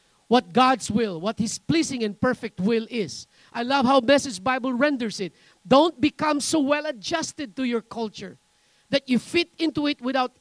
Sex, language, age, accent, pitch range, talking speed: male, English, 40-59, Filipino, 245-305 Hz, 180 wpm